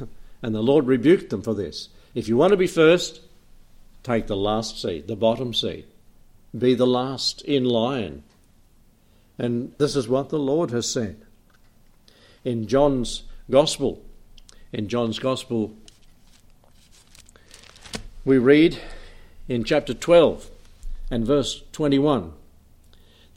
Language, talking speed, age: English, 120 wpm, 60-79